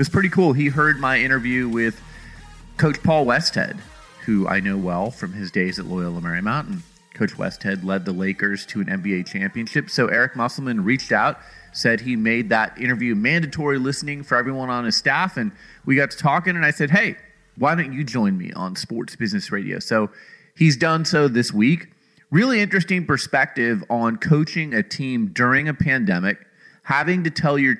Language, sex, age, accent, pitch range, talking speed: English, male, 30-49, American, 115-160 Hz, 185 wpm